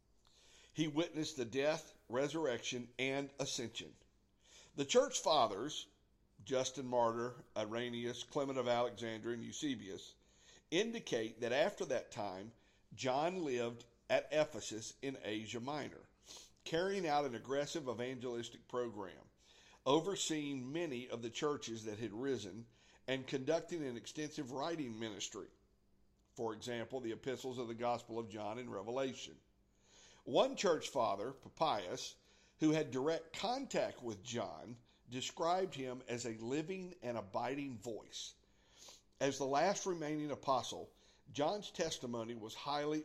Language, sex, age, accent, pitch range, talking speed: English, male, 50-69, American, 115-150 Hz, 125 wpm